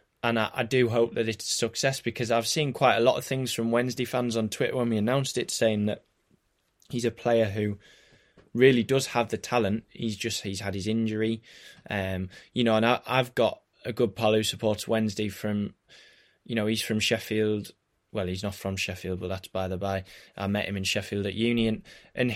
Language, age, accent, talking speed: English, 20-39, British, 210 wpm